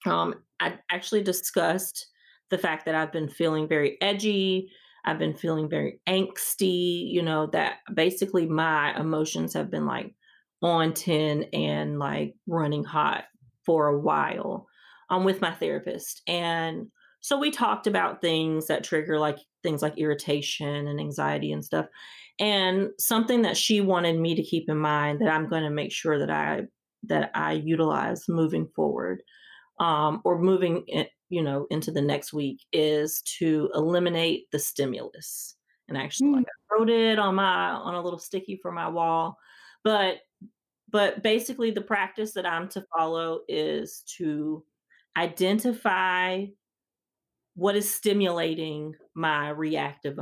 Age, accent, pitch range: 30-49, American, 150-195 Hz